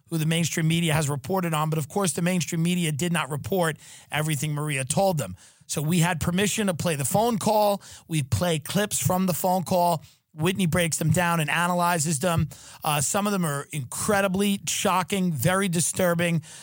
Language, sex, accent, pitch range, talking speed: English, male, American, 150-180 Hz, 190 wpm